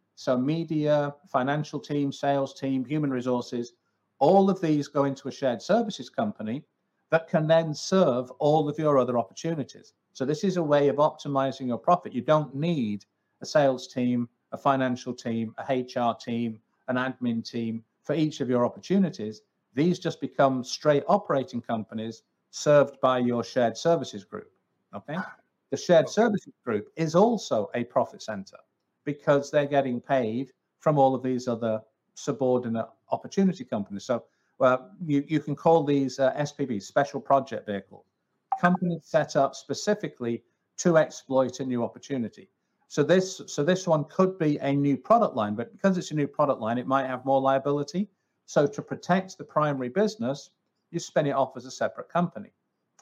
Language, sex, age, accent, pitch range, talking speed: English, male, 50-69, British, 130-165 Hz, 165 wpm